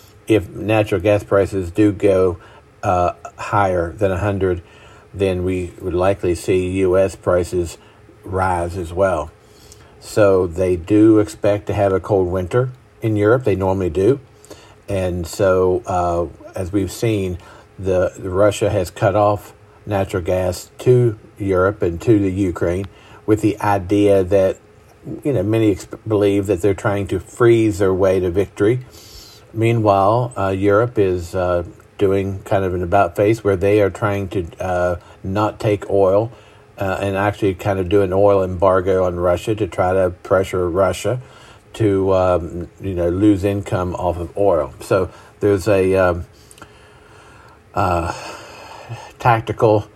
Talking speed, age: 150 wpm, 50-69